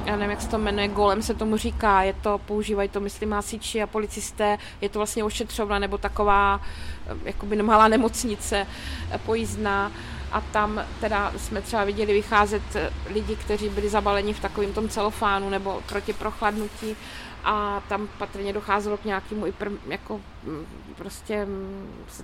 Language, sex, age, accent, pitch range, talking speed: Czech, female, 20-39, native, 195-210 Hz, 150 wpm